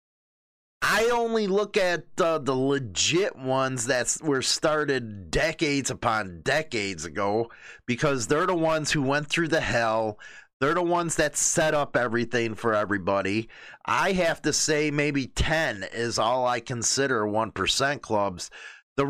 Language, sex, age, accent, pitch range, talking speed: English, male, 30-49, American, 115-155 Hz, 145 wpm